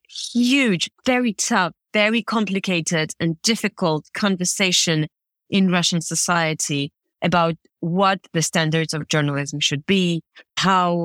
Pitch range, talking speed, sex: 155-195 Hz, 110 wpm, female